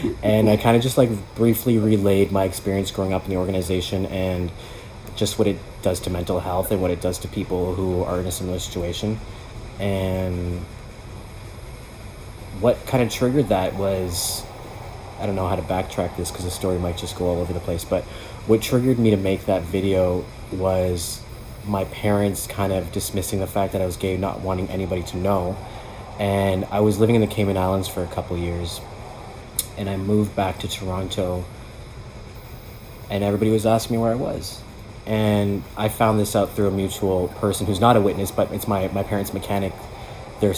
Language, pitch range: English, 95-110 Hz